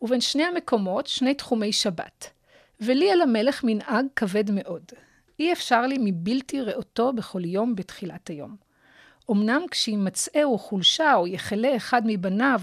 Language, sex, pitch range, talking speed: Hebrew, female, 195-260 Hz, 135 wpm